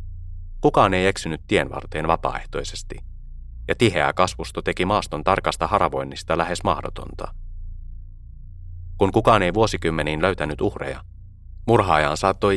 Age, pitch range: 30-49, 80-95 Hz